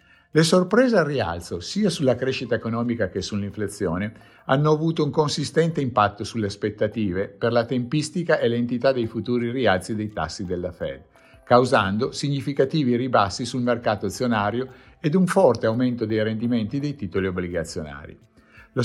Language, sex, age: Italian, male, 50-69